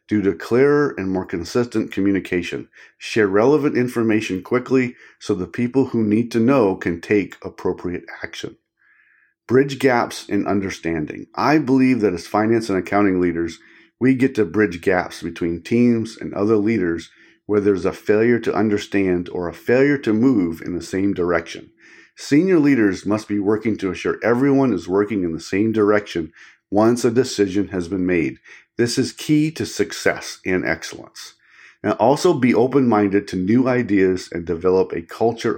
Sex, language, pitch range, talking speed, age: male, English, 95-120 Hz, 165 wpm, 50-69